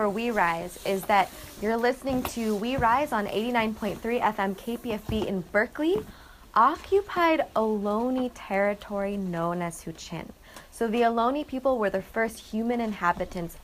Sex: female